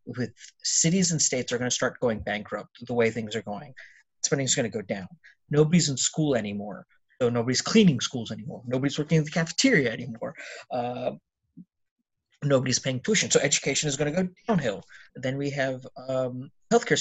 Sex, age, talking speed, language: male, 30-49, 185 wpm, English